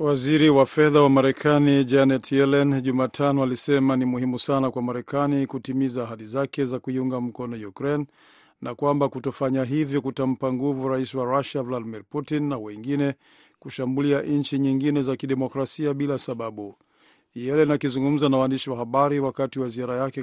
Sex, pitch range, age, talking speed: male, 125-140 Hz, 50-69, 150 wpm